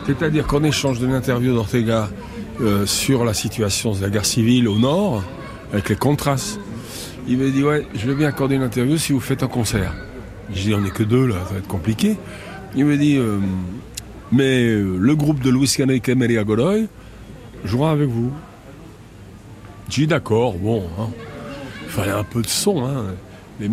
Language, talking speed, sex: French, 190 wpm, male